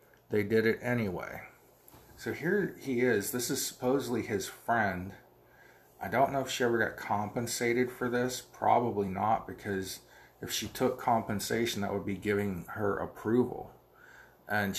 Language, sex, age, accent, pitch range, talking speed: English, male, 40-59, American, 95-115 Hz, 150 wpm